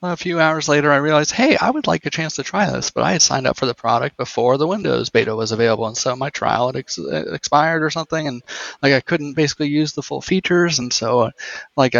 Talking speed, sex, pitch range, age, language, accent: 250 wpm, male, 130-155 Hz, 30-49, English, American